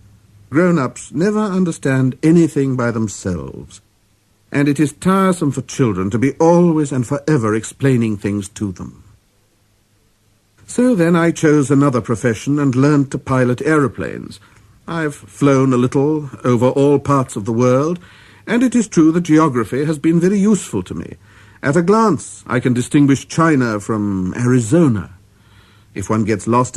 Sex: male